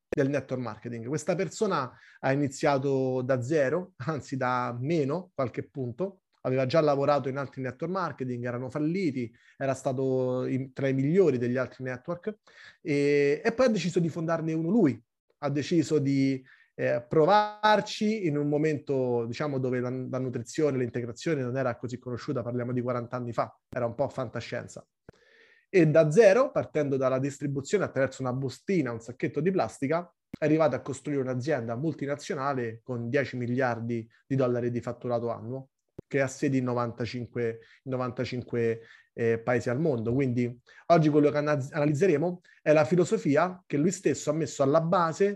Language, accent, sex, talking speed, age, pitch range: Italian, native, male, 155 wpm, 30-49, 125-160 Hz